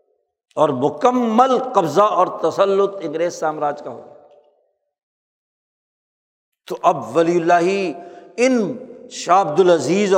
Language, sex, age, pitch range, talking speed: Urdu, male, 60-79, 165-240 Hz, 95 wpm